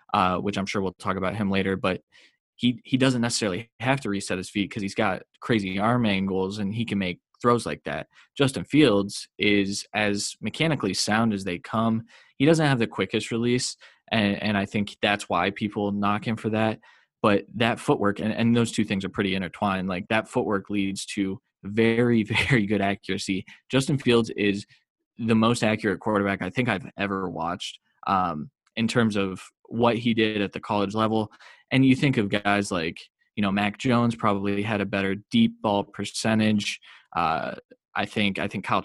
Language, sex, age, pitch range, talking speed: English, male, 20-39, 100-115 Hz, 190 wpm